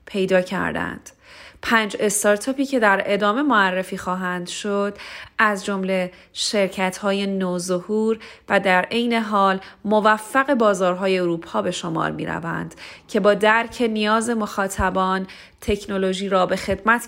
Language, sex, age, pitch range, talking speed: Persian, female, 30-49, 190-225 Hz, 120 wpm